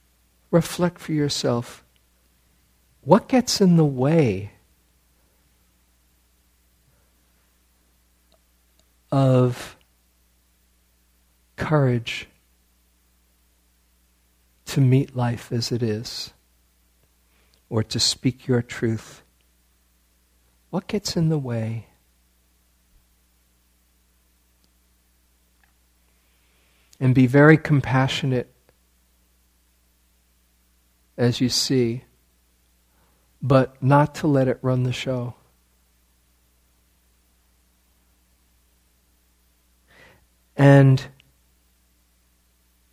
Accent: American